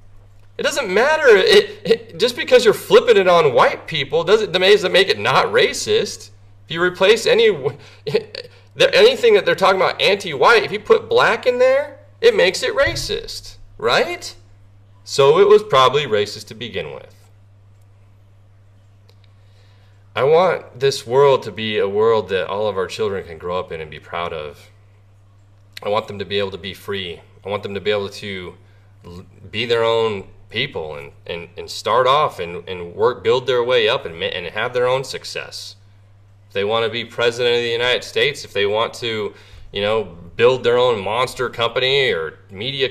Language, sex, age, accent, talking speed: English, male, 30-49, American, 185 wpm